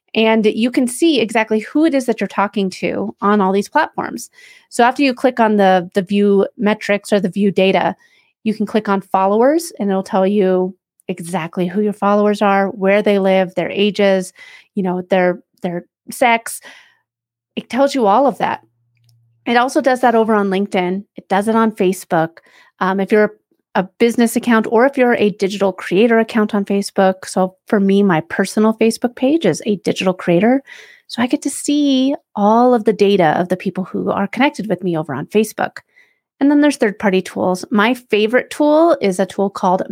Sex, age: female, 30-49